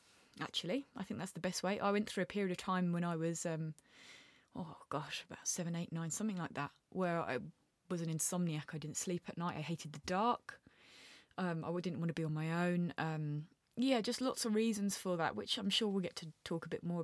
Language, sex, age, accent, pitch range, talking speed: English, female, 20-39, British, 170-205 Hz, 240 wpm